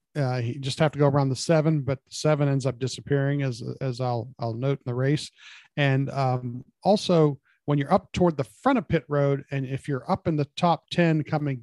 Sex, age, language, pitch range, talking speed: male, 40-59, English, 130-165 Hz, 225 wpm